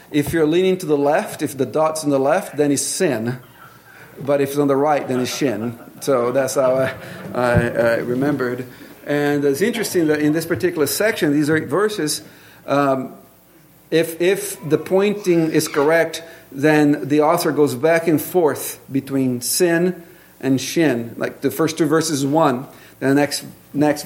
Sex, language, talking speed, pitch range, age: male, English, 175 wpm, 135-165 Hz, 40-59